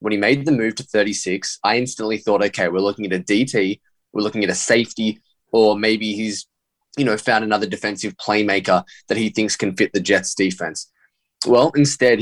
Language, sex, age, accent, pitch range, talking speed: English, male, 10-29, Australian, 105-130 Hz, 195 wpm